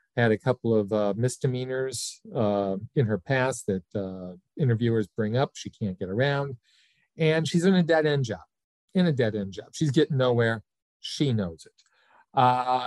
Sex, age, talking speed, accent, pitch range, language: male, 40-59, 175 wpm, American, 110-160 Hz, English